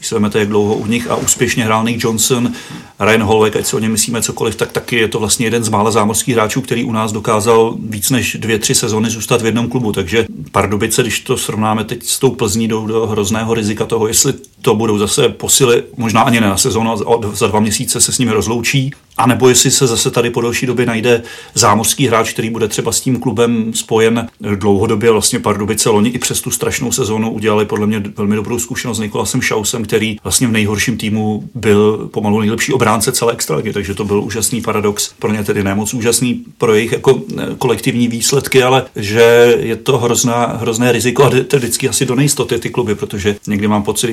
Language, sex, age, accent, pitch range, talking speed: Czech, male, 40-59, native, 105-120 Hz, 210 wpm